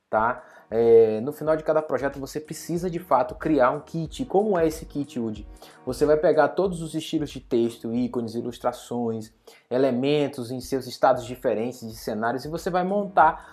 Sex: male